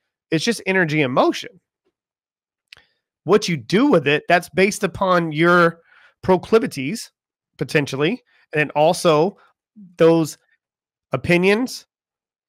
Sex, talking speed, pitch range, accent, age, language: male, 95 wpm, 145-180 Hz, American, 30-49, English